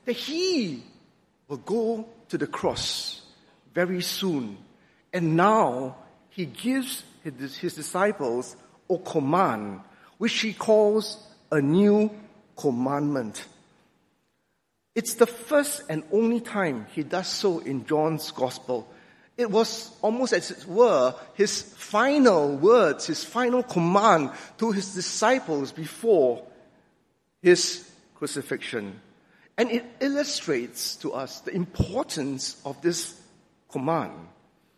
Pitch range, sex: 150-220 Hz, male